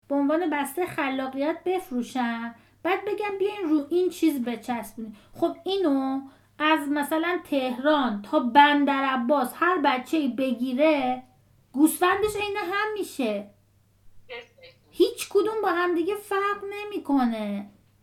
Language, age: Persian, 30-49